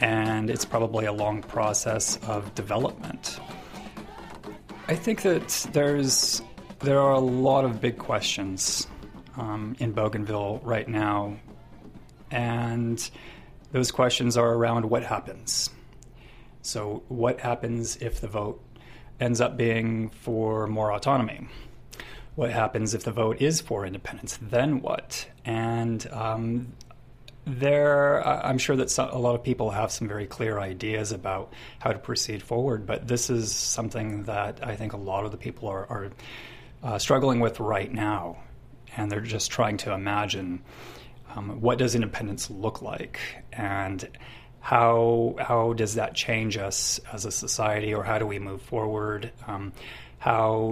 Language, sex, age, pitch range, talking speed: English, male, 30-49, 105-120 Hz, 145 wpm